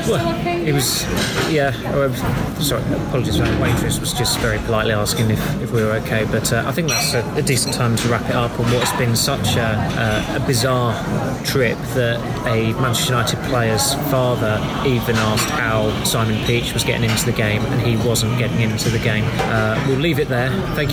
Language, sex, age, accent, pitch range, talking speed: English, male, 20-39, British, 115-130 Hz, 200 wpm